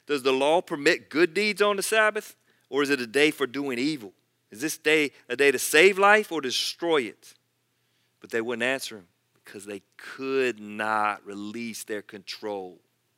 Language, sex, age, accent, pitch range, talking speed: English, male, 40-59, American, 110-150 Hz, 180 wpm